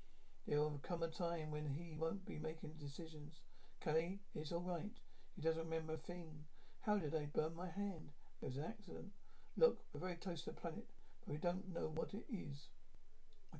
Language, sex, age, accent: English, male, 50-69, British